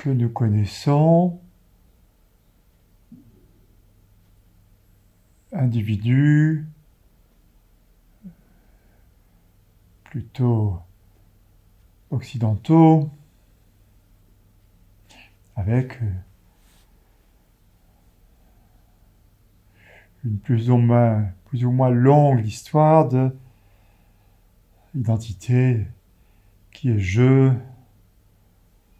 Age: 50-69